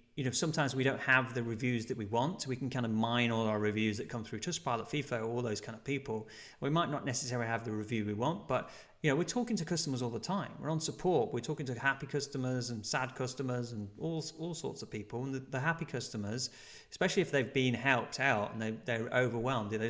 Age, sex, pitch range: 30-49, male, 110-140 Hz